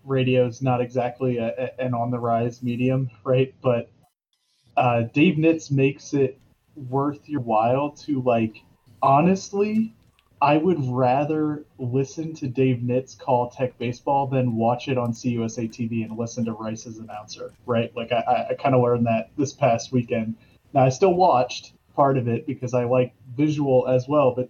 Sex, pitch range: male, 115-135 Hz